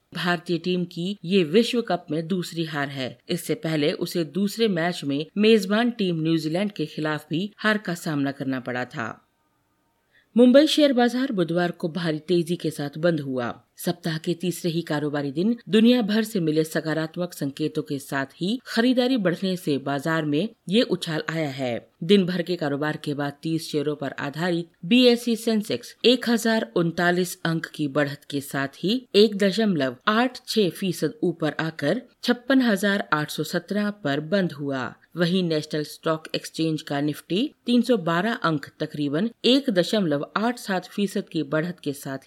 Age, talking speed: 50-69, 155 wpm